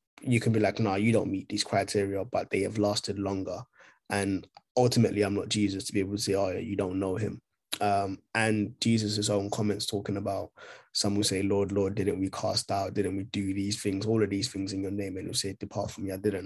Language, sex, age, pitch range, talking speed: English, male, 20-39, 100-110 Hz, 245 wpm